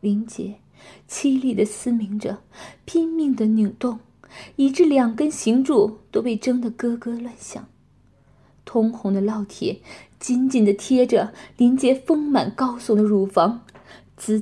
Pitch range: 210-260 Hz